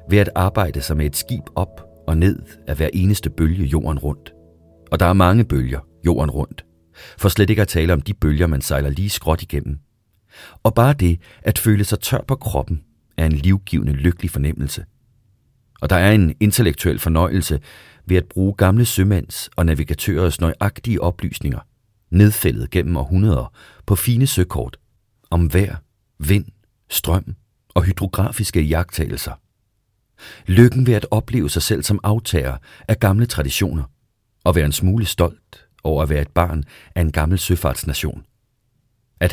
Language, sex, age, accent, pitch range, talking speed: Danish, male, 40-59, native, 80-105 Hz, 160 wpm